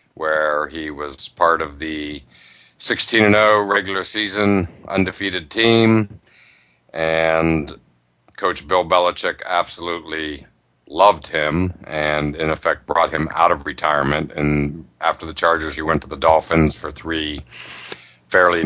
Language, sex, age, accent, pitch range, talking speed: English, male, 60-79, American, 80-95 Hz, 120 wpm